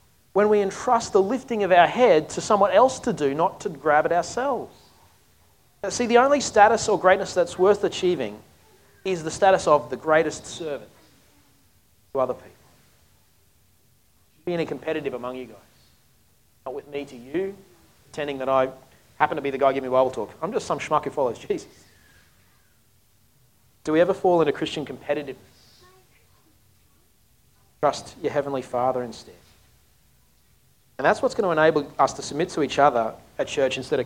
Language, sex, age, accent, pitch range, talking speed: English, male, 30-49, Australian, 115-170 Hz, 165 wpm